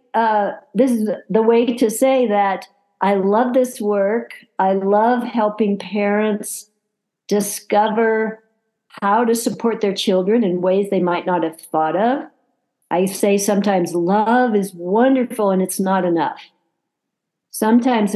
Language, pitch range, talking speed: English, 185-225 Hz, 135 wpm